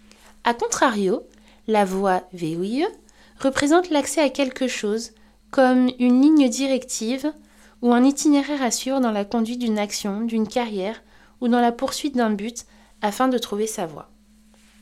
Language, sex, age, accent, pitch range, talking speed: French, female, 20-39, French, 215-270 Hz, 145 wpm